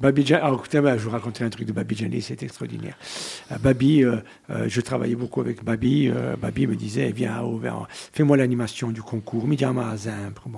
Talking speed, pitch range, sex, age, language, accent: 195 wpm, 125-185 Hz, male, 60-79, French, French